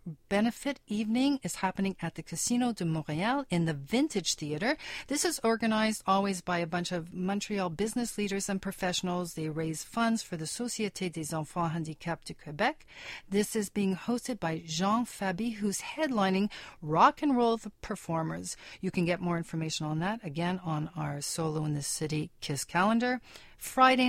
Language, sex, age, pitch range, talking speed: English, female, 40-59, 165-225 Hz, 165 wpm